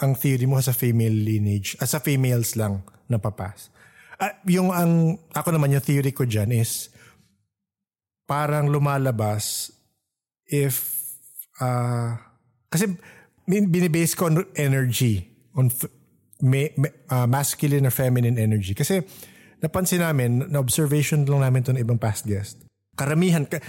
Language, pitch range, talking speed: English, 115-155 Hz, 120 wpm